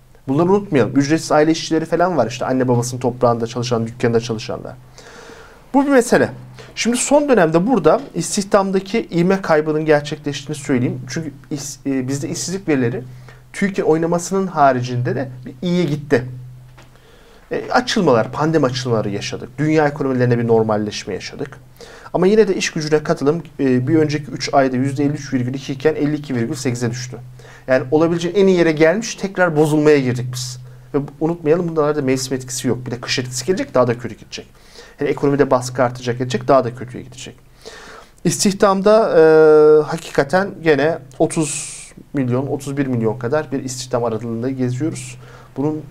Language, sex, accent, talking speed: Turkish, male, native, 145 wpm